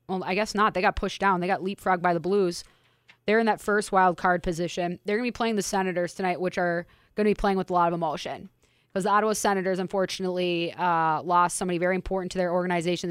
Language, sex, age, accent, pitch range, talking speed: English, female, 20-39, American, 175-195 Hz, 245 wpm